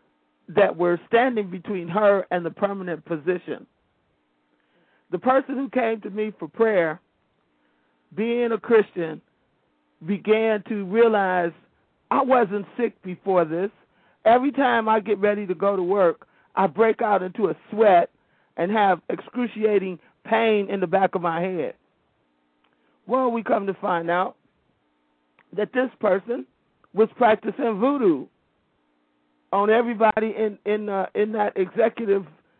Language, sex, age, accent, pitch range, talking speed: English, male, 50-69, American, 180-230 Hz, 135 wpm